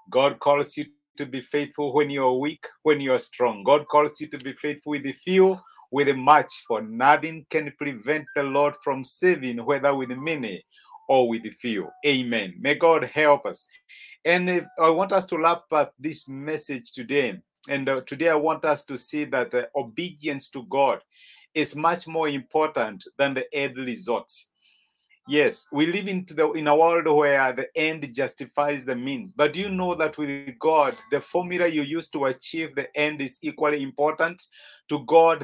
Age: 50-69